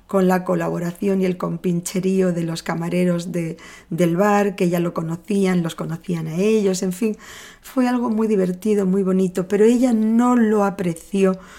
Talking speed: 170 wpm